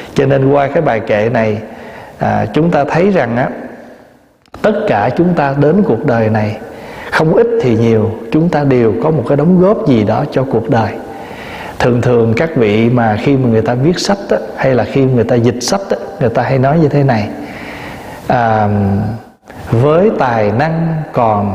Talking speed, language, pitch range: 195 wpm, Vietnamese, 115-170 Hz